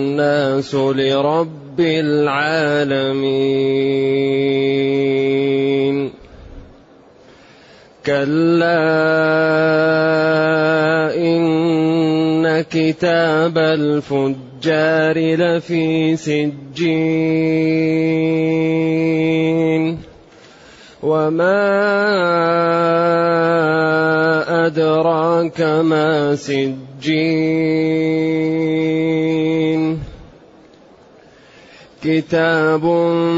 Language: Arabic